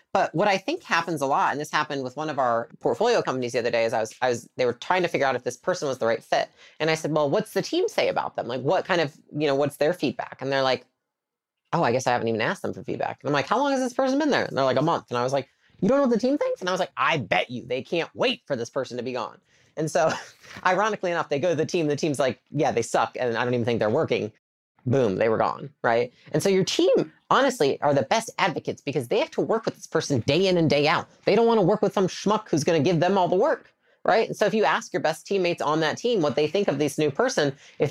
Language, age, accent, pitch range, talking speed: English, 30-49, American, 135-195 Hz, 300 wpm